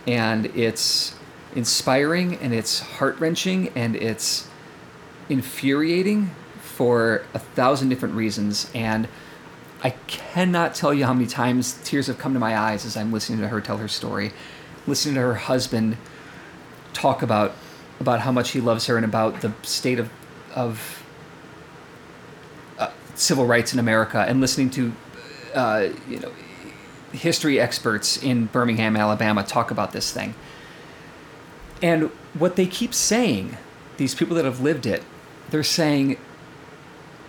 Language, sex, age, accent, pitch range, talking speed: English, male, 40-59, American, 120-155 Hz, 140 wpm